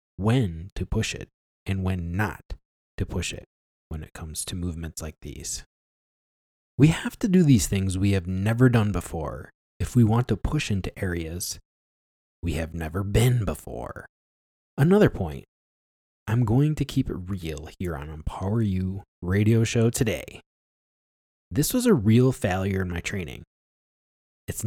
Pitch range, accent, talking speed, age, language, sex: 80-120 Hz, American, 155 wpm, 20-39, English, male